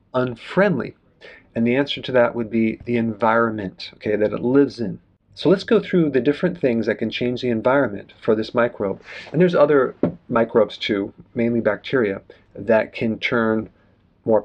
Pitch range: 105-130 Hz